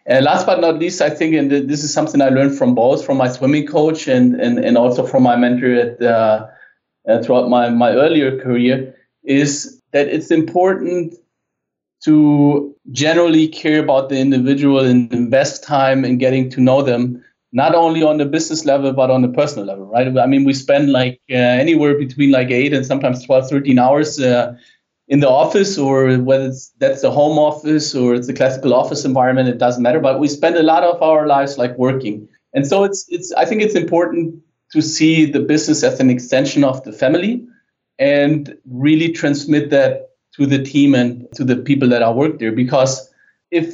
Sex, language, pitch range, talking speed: male, English, 130-155 Hz, 195 wpm